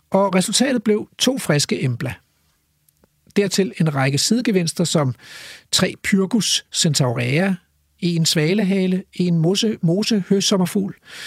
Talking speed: 95 wpm